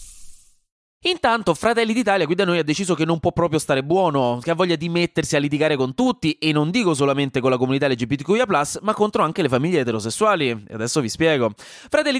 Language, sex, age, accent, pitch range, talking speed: Italian, male, 20-39, native, 130-185 Hz, 200 wpm